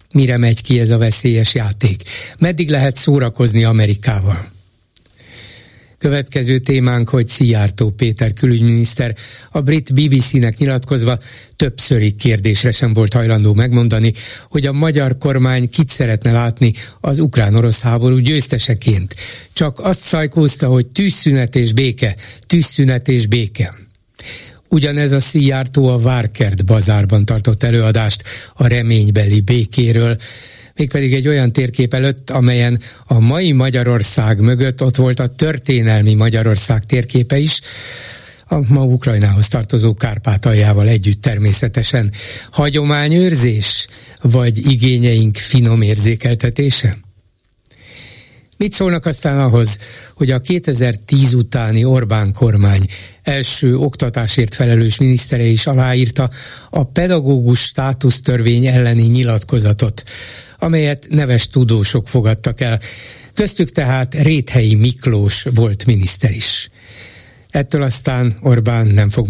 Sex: male